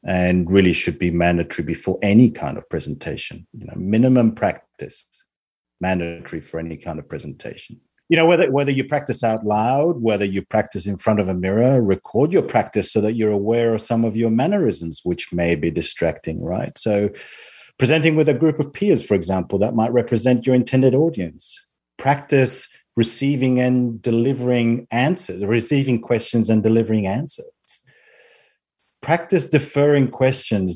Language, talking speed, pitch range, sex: English, 160 wpm, 100-130 Hz, male